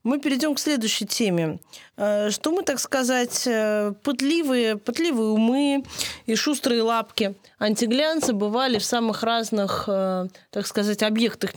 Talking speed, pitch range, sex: 120 wpm, 185-230 Hz, female